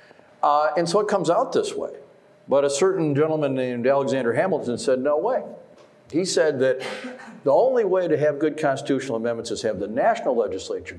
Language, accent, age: English, American, 50-69